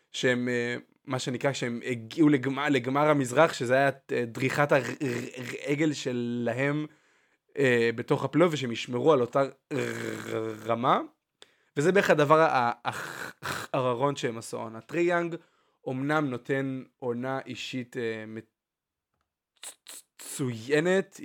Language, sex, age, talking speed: Hebrew, male, 20-39, 90 wpm